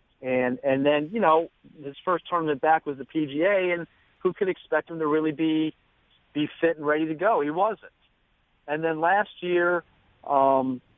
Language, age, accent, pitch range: English, 40-59, American, 130-160 Hz